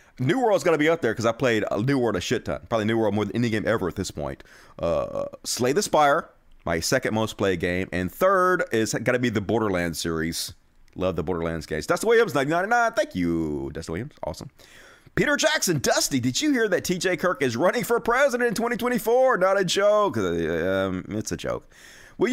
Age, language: 30-49, English